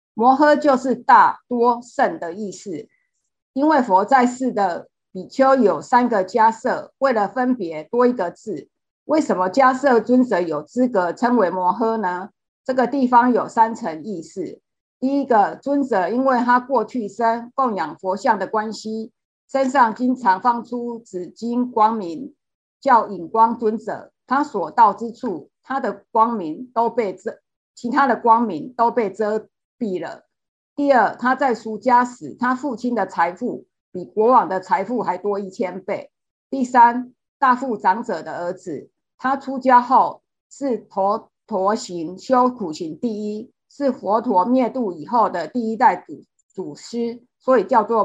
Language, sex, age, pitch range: Chinese, female, 50-69, 205-260 Hz